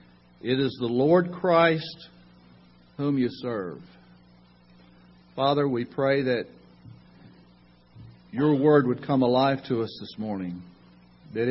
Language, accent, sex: English, American, male